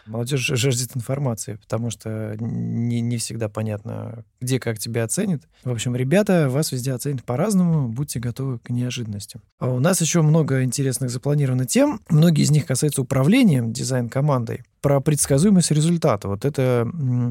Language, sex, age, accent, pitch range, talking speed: Russian, male, 20-39, native, 110-140 Hz, 145 wpm